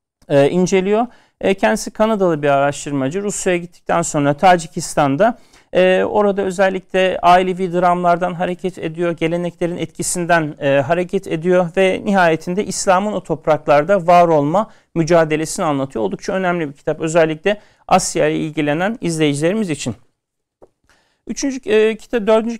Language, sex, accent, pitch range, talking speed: Turkish, male, native, 145-190 Hz, 110 wpm